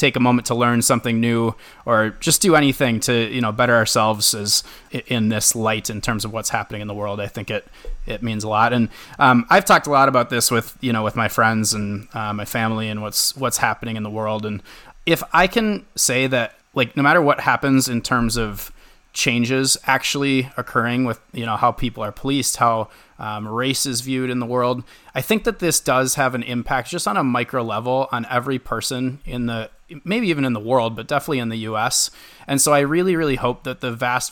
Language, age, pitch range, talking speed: English, 30-49, 115-135 Hz, 225 wpm